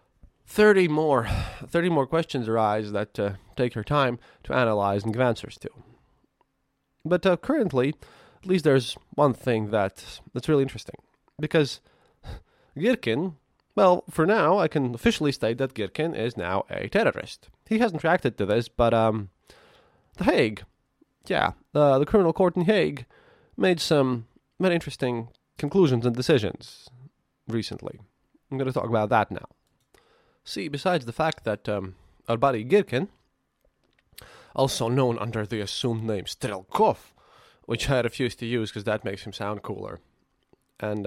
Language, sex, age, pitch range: English, male, 20-39, 110-150 Hz